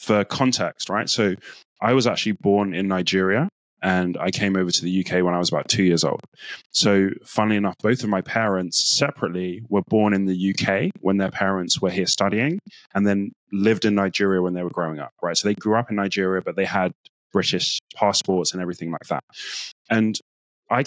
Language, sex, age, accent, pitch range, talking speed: English, male, 20-39, British, 95-110 Hz, 205 wpm